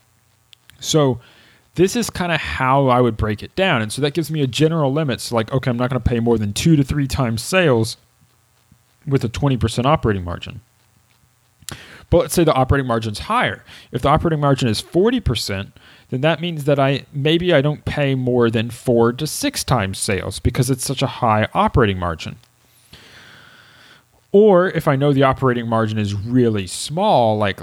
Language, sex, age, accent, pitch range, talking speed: English, male, 30-49, American, 110-145 Hz, 190 wpm